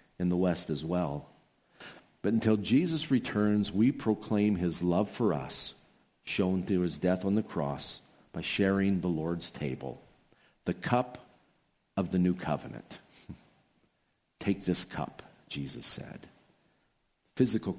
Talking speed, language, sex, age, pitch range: 130 wpm, English, male, 50-69, 90-115 Hz